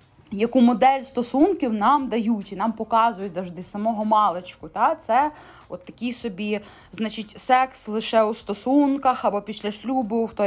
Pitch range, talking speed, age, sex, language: 215-260 Hz, 145 wpm, 20-39, female, Ukrainian